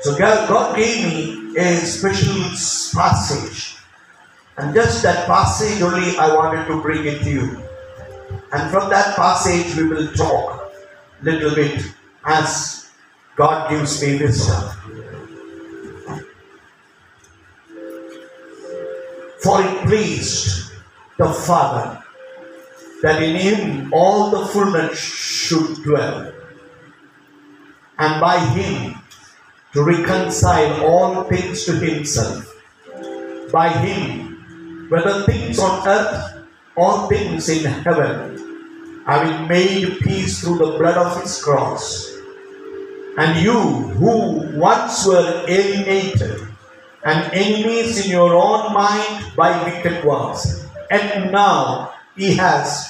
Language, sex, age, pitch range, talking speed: English, male, 50-69, 145-200 Hz, 110 wpm